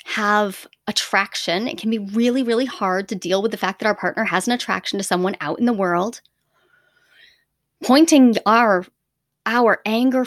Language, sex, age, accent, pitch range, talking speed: English, female, 30-49, American, 205-275 Hz, 170 wpm